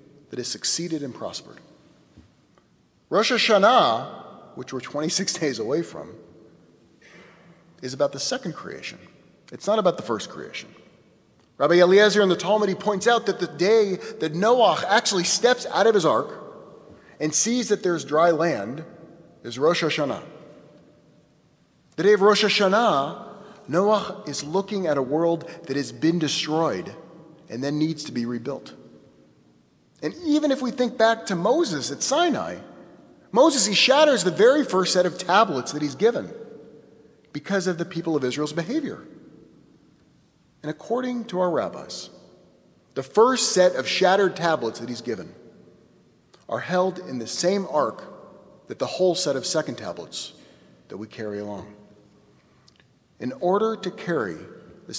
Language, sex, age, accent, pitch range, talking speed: English, male, 30-49, American, 140-200 Hz, 150 wpm